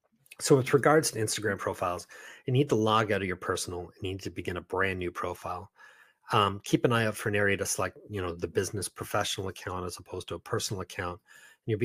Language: English